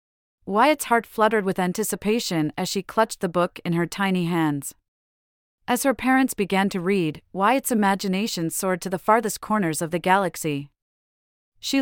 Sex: female